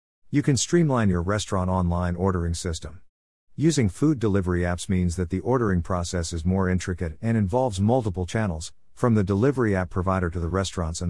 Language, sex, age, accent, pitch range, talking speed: English, male, 50-69, American, 90-115 Hz, 180 wpm